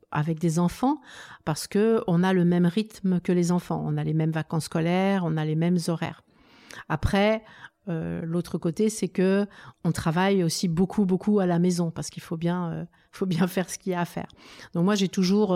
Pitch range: 170-205 Hz